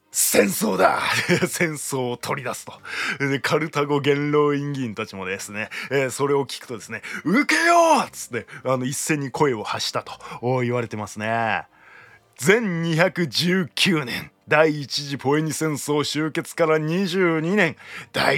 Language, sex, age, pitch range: Japanese, male, 20-39, 125-175 Hz